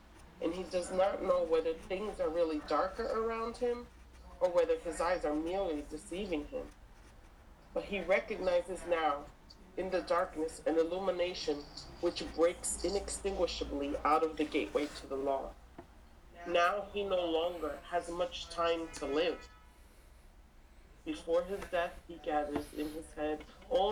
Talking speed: 145 wpm